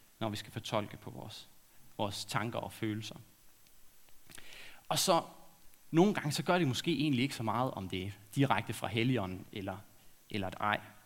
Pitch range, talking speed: 110-145 Hz, 175 wpm